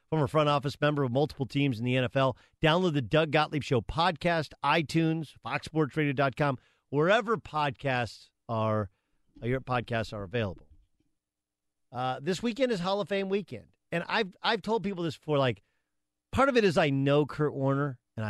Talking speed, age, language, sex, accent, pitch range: 165 wpm, 40-59, English, male, American, 105-155 Hz